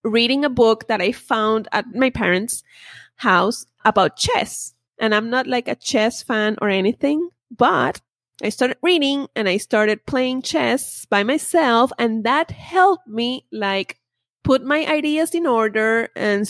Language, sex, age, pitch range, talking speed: English, female, 30-49, 200-260 Hz, 155 wpm